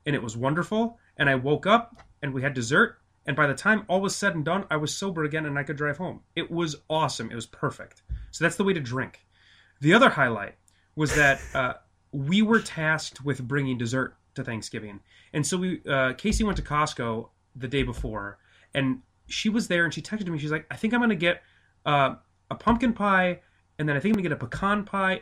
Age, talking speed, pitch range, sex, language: 30-49, 235 wpm, 125-180 Hz, male, English